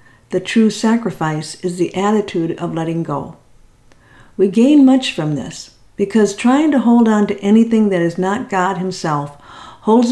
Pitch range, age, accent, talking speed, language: 165-210 Hz, 50-69, American, 160 wpm, English